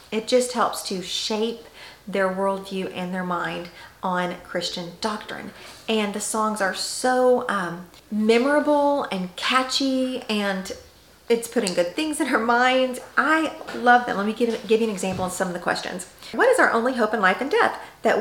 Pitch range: 195-255 Hz